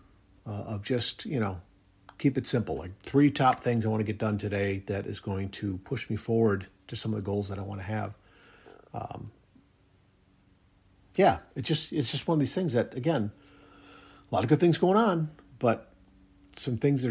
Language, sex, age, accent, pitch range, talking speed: English, male, 50-69, American, 95-125 Hz, 200 wpm